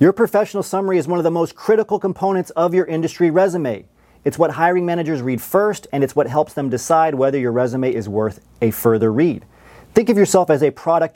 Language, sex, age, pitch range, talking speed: English, male, 40-59, 130-175 Hz, 215 wpm